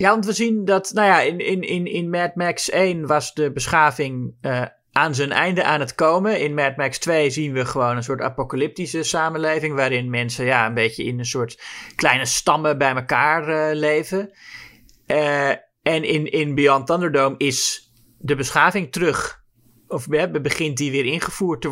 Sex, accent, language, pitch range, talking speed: male, Dutch, Dutch, 130-165 Hz, 175 wpm